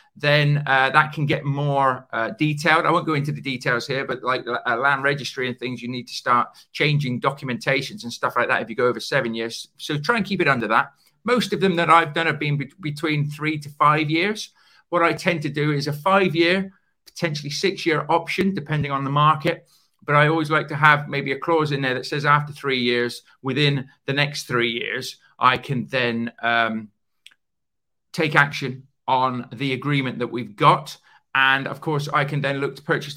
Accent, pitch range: British, 135-160 Hz